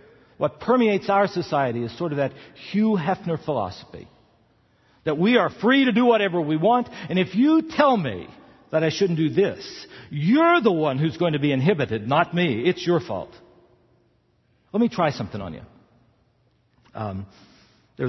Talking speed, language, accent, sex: 165 wpm, English, American, male